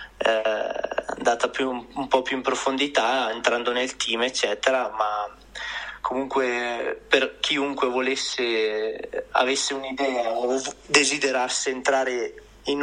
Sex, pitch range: male, 120-140 Hz